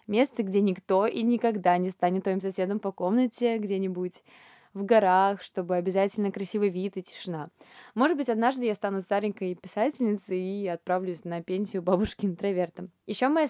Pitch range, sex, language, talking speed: 190-230 Hz, female, Russian, 150 wpm